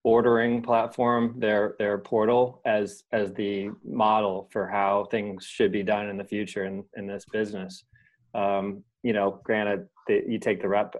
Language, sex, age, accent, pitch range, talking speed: English, male, 20-39, American, 100-115 Hz, 170 wpm